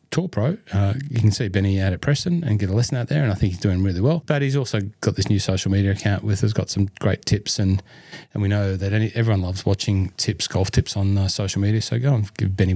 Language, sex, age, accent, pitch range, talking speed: English, male, 30-49, Australian, 105-125 Hz, 275 wpm